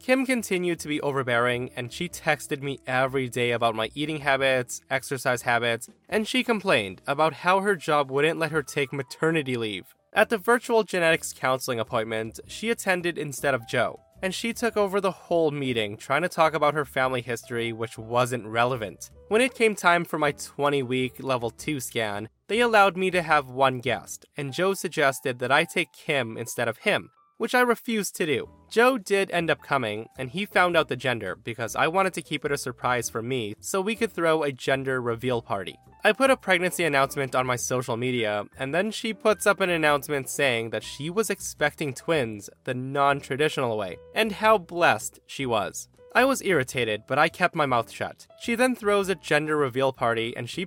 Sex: male